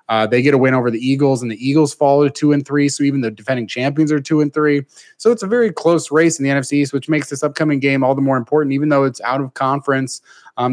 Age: 20-39